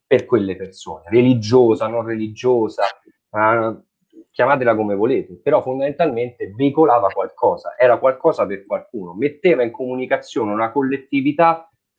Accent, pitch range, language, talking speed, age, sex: native, 105-145 Hz, Italian, 110 wpm, 30-49, male